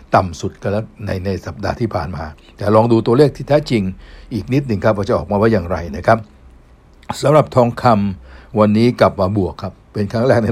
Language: Thai